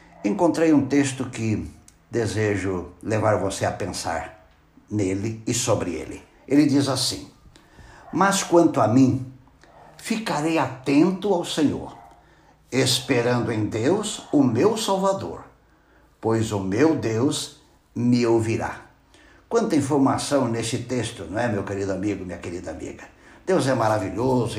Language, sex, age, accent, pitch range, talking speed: Portuguese, male, 60-79, Brazilian, 110-175 Hz, 125 wpm